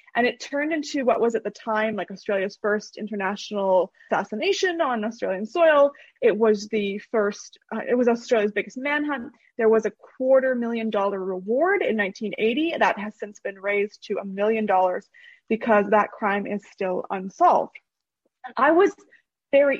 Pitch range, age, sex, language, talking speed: 205-250 Hz, 20-39, female, English, 165 wpm